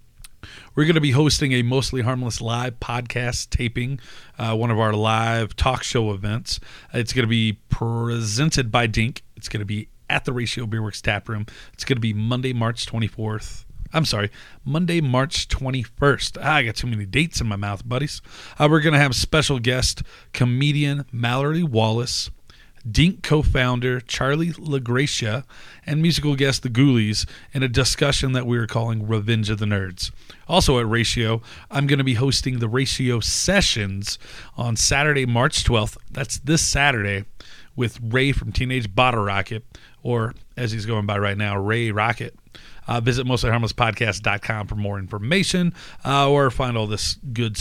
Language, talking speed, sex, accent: English, 170 wpm, male, American